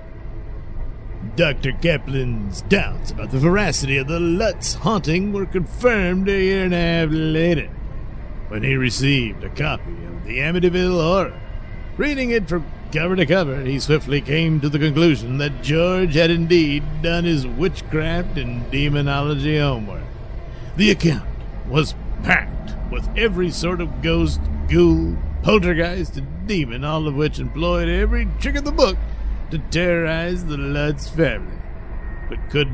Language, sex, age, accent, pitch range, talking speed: English, male, 60-79, American, 130-175 Hz, 145 wpm